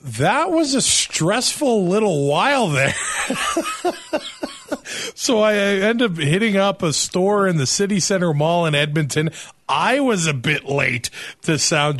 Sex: male